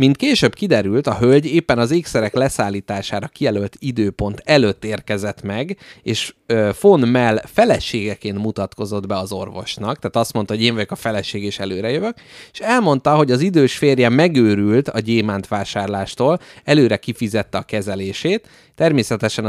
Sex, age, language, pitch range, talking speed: male, 30-49, Hungarian, 105-135 Hz, 150 wpm